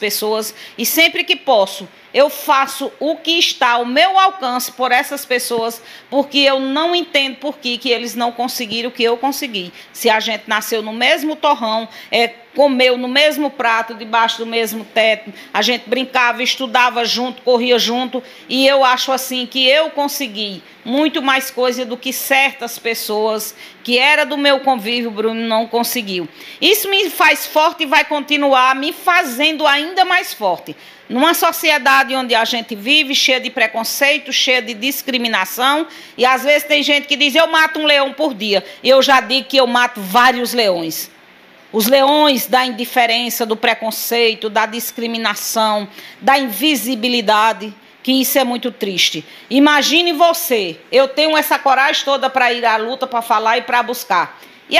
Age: 40-59